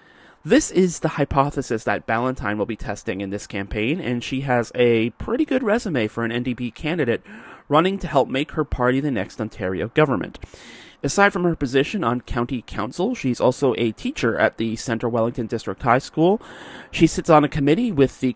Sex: male